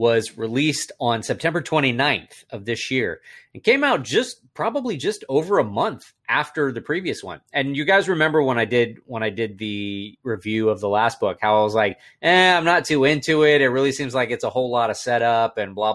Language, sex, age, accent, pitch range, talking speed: English, male, 30-49, American, 105-140 Hz, 220 wpm